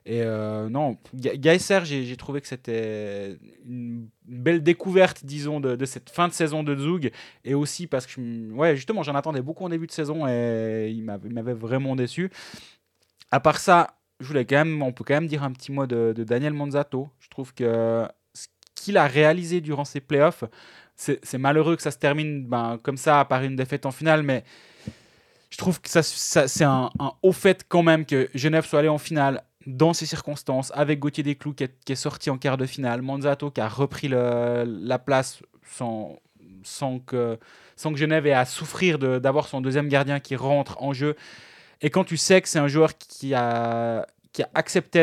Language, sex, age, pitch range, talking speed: French, male, 20-39, 125-155 Hz, 210 wpm